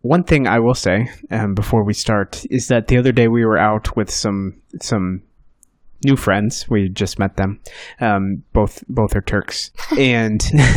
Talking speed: 180 wpm